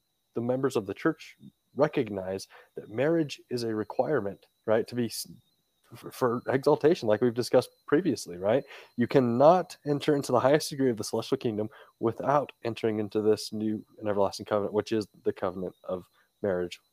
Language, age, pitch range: English, 30-49, 115-150 Hz